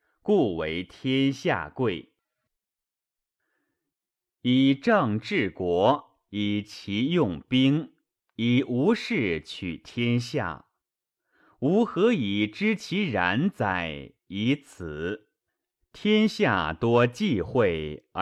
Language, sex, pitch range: Chinese, male, 95-155 Hz